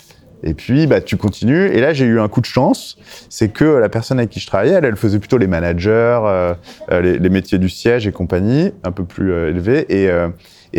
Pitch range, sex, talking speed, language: 95-130 Hz, male, 240 wpm, French